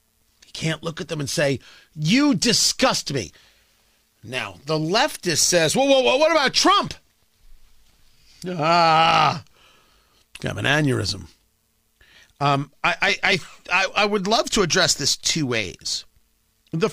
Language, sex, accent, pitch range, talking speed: English, male, American, 125-205 Hz, 130 wpm